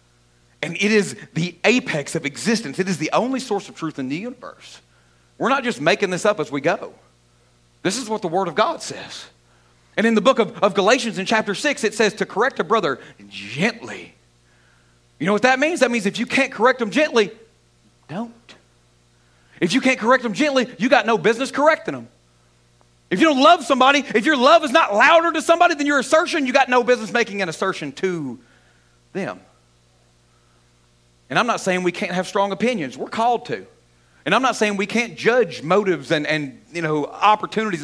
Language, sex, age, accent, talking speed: English, male, 40-59, American, 200 wpm